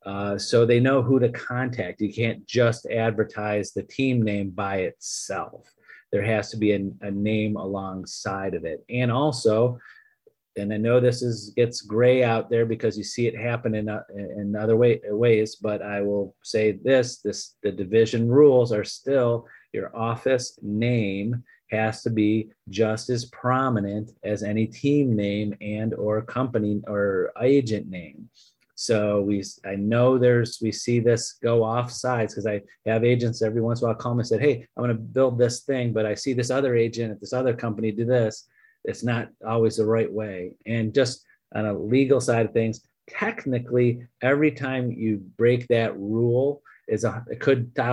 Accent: American